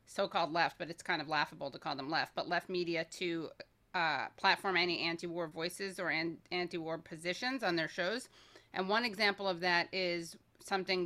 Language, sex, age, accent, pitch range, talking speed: English, female, 30-49, American, 170-195 Hz, 180 wpm